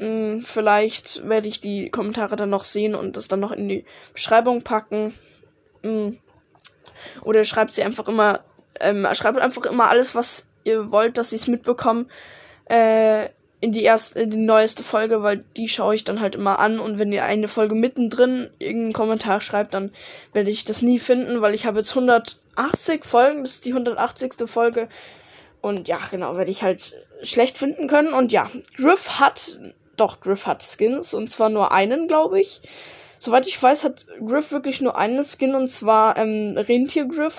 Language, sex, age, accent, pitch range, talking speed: German, female, 10-29, German, 215-260 Hz, 180 wpm